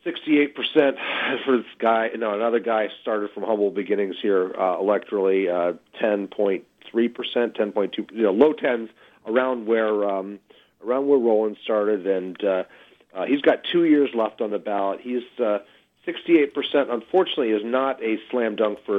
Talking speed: 150 wpm